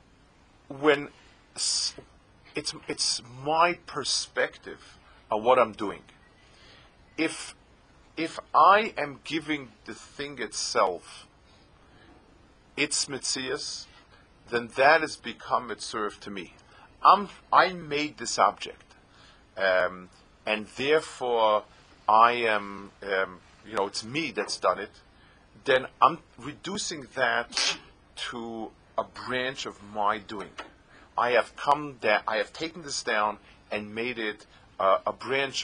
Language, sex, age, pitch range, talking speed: English, male, 40-59, 105-150 Hz, 120 wpm